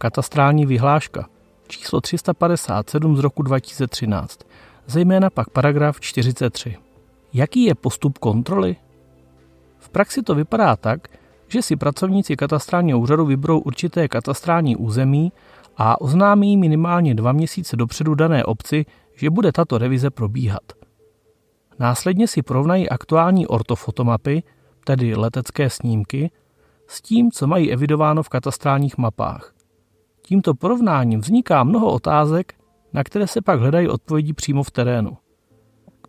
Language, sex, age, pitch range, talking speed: Czech, male, 30-49, 120-165 Hz, 120 wpm